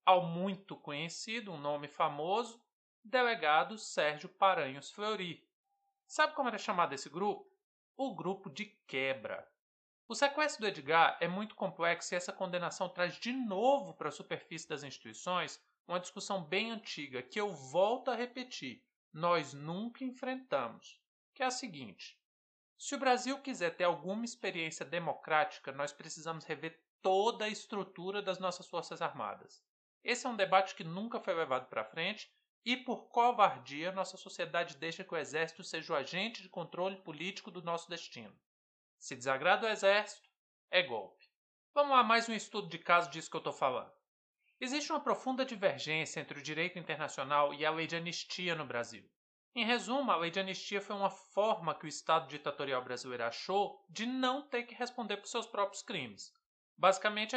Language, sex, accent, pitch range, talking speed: Portuguese, male, Brazilian, 165-235 Hz, 165 wpm